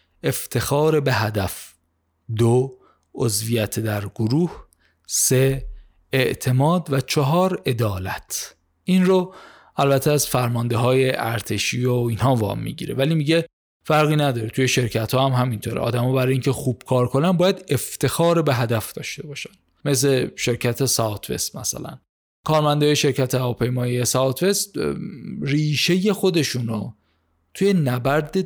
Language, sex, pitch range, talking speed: Persian, male, 115-150 Hz, 120 wpm